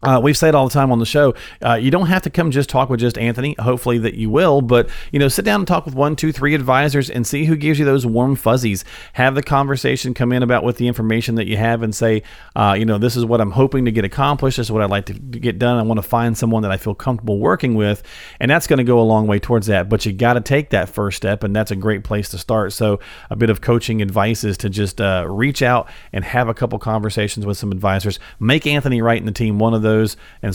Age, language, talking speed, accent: 40-59, English, 280 wpm, American